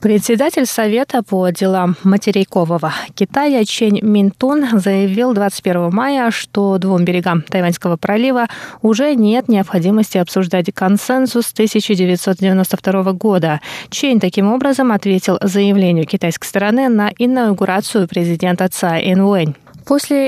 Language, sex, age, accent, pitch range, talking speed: Russian, female, 20-39, native, 185-245 Hz, 105 wpm